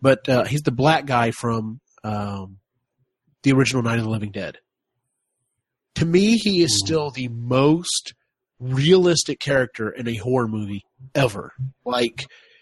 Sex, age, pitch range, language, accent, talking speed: male, 30-49, 120-155 Hz, English, American, 145 wpm